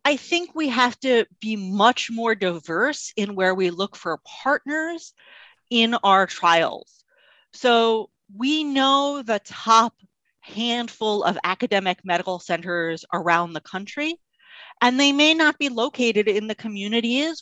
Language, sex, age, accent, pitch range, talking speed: English, female, 30-49, American, 190-255 Hz, 140 wpm